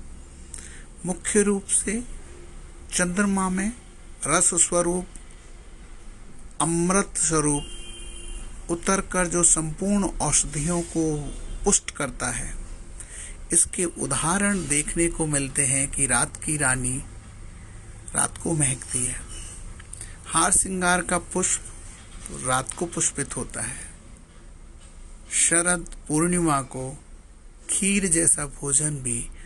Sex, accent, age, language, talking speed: male, Indian, 60-79, English, 95 wpm